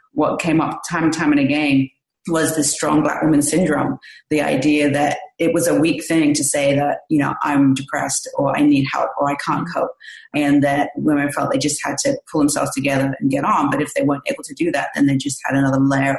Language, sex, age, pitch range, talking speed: English, female, 30-49, 140-160 Hz, 240 wpm